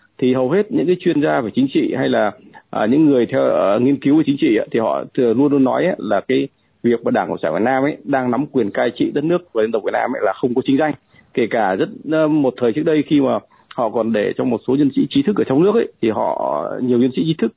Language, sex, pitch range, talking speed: Vietnamese, male, 125-160 Hz, 300 wpm